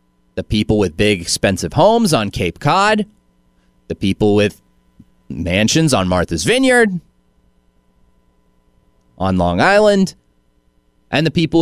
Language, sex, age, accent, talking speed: English, male, 30-49, American, 115 wpm